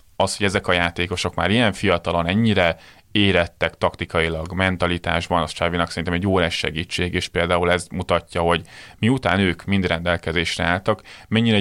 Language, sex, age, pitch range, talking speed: Hungarian, male, 30-49, 90-100 Hz, 150 wpm